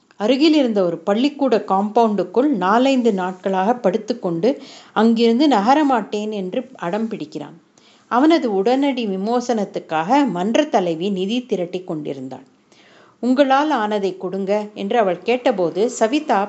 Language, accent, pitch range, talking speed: Tamil, native, 200-255 Hz, 105 wpm